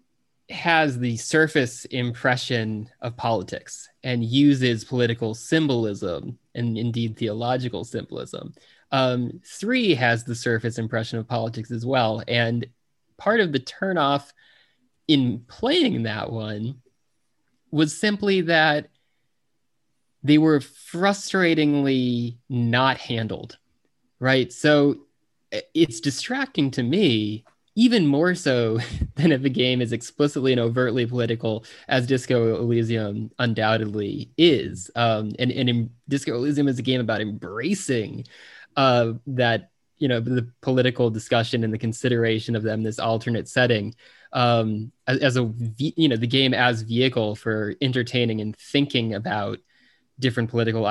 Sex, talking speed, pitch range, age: male, 125 wpm, 115-135 Hz, 20-39